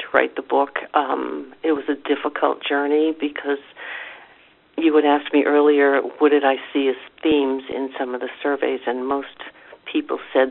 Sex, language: female, English